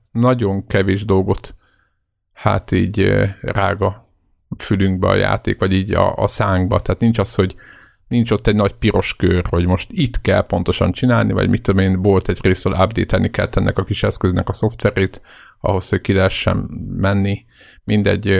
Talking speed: 165 wpm